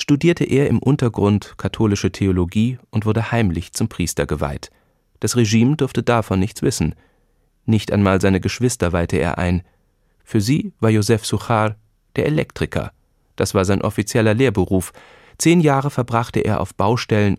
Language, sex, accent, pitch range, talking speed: German, male, German, 90-125 Hz, 150 wpm